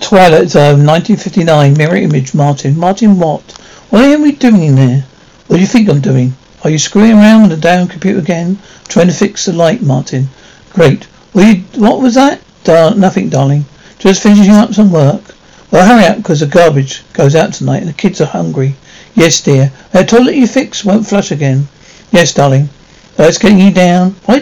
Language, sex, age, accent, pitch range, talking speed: English, male, 60-79, British, 160-205 Hz, 190 wpm